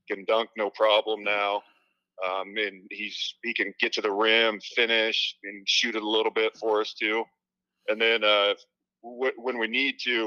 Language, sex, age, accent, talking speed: English, male, 40-59, American, 185 wpm